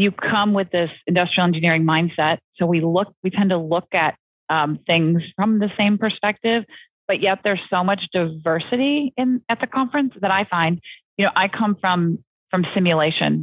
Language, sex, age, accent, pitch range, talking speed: English, female, 30-49, American, 155-190 Hz, 185 wpm